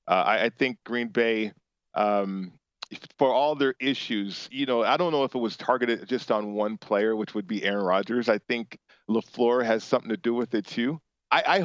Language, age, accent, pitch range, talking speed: English, 40-59, American, 115-150 Hz, 205 wpm